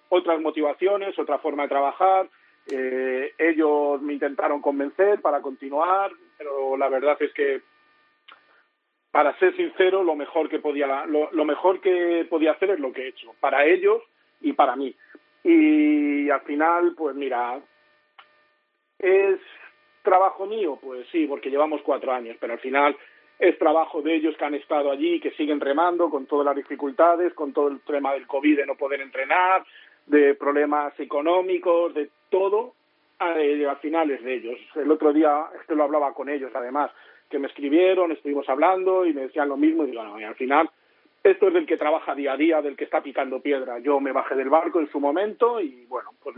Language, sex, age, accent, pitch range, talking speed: Spanish, male, 40-59, Spanish, 140-185 Hz, 185 wpm